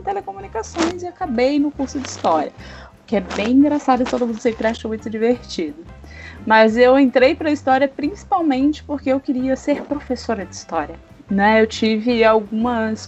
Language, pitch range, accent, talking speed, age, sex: Portuguese, 210-260 Hz, Brazilian, 170 wpm, 20-39, female